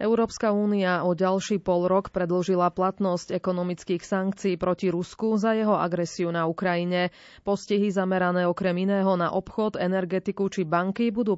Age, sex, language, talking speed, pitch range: 20-39, female, Slovak, 140 wpm, 175-200 Hz